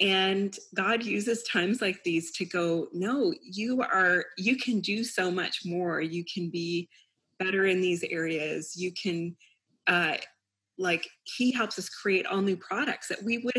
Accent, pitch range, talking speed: American, 180-235 Hz, 170 wpm